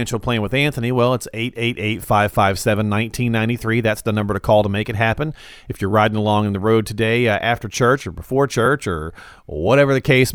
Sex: male